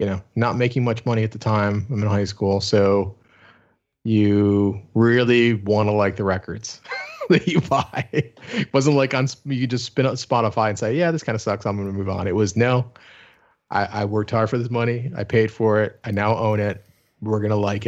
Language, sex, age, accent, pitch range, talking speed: English, male, 30-49, American, 105-120 Hz, 225 wpm